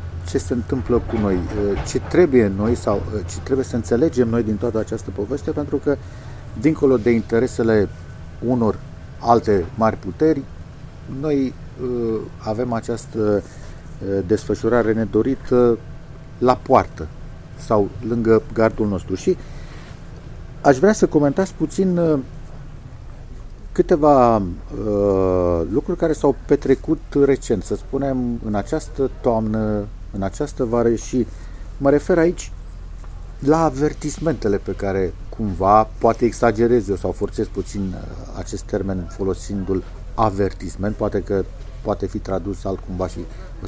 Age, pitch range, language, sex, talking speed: 50-69, 95-130 Hz, Romanian, male, 115 wpm